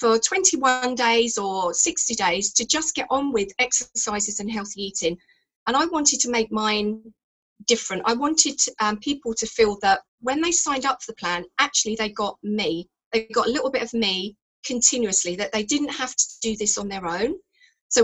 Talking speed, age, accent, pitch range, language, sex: 195 wpm, 40-59, British, 210-260 Hz, English, female